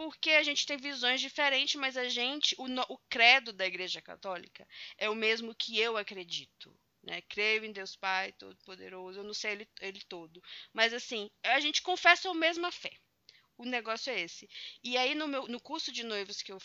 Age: 20-39